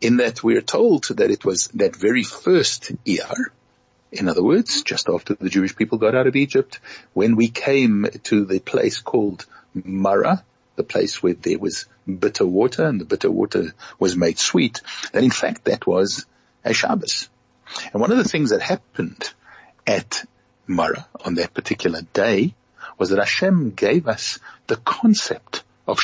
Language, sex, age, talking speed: English, male, 60-79, 170 wpm